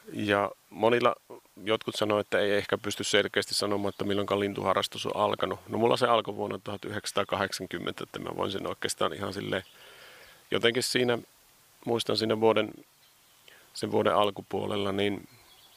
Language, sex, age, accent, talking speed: Finnish, male, 30-49, native, 140 wpm